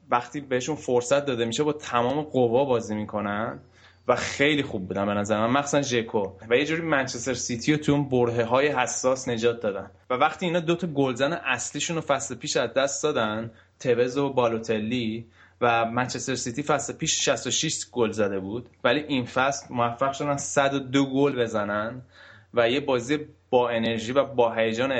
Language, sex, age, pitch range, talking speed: Persian, male, 20-39, 110-135 Hz, 170 wpm